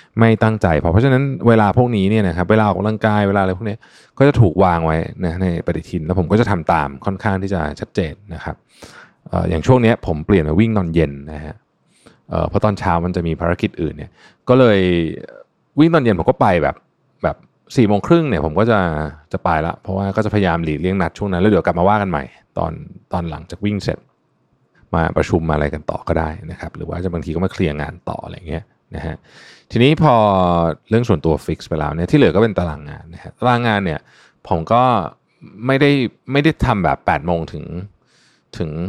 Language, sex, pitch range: Thai, male, 85-110 Hz